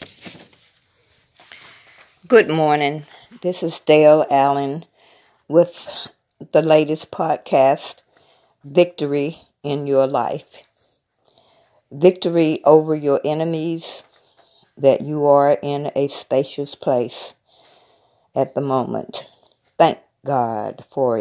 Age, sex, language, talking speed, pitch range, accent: 50-69, female, English, 90 wpm, 130-155 Hz, American